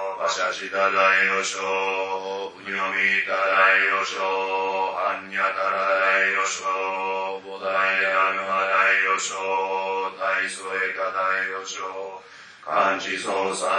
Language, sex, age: Japanese, male, 30-49